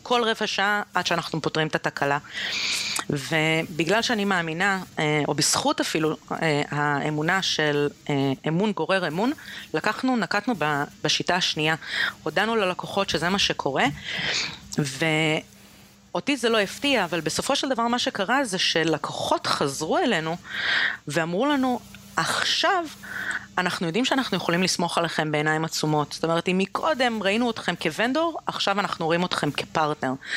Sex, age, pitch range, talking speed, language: female, 30-49, 155-220 Hz, 130 wpm, Hebrew